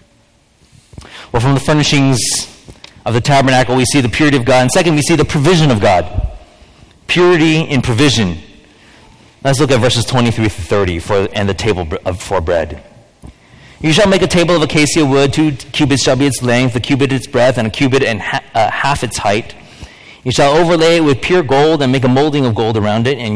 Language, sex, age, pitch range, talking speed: English, male, 30-49, 105-135 Hz, 200 wpm